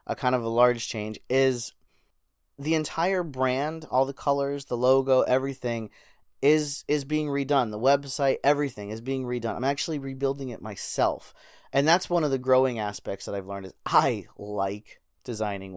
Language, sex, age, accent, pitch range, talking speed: English, male, 30-49, American, 115-140 Hz, 170 wpm